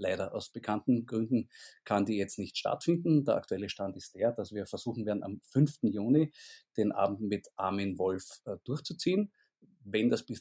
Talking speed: 175 wpm